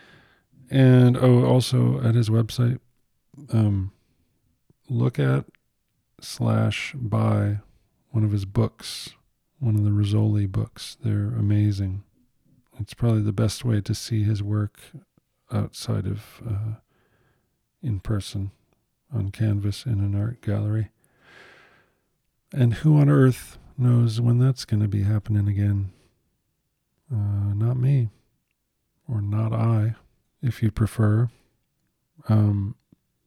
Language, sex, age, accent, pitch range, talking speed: English, male, 40-59, American, 105-120 Hz, 115 wpm